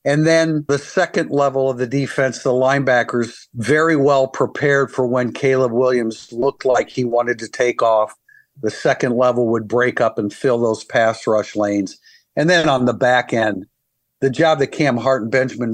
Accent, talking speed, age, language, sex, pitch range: American, 185 wpm, 50-69, English, male, 120-145 Hz